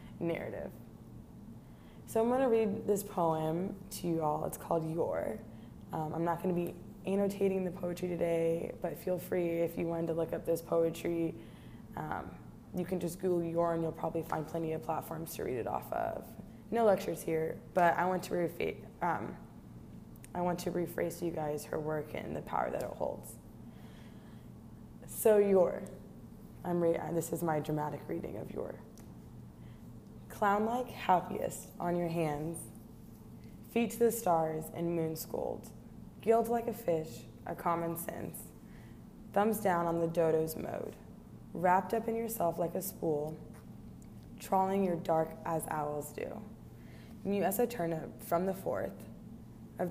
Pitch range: 165-190 Hz